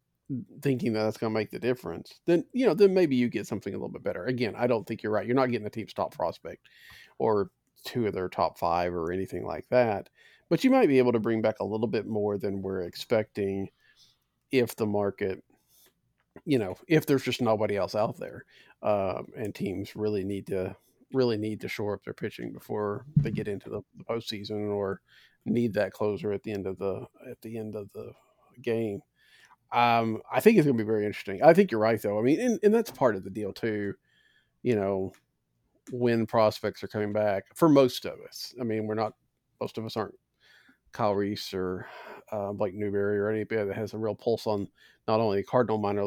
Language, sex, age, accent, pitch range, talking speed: English, male, 40-59, American, 100-120 Hz, 210 wpm